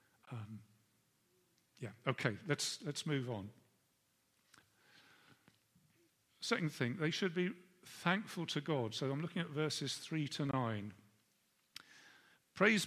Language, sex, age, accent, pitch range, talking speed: English, male, 50-69, British, 130-170 Hz, 120 wpm